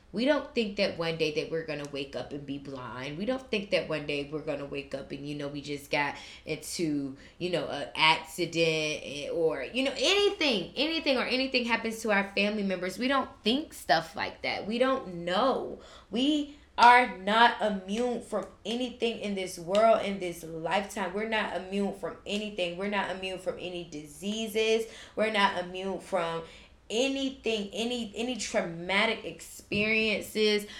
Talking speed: 175 wpm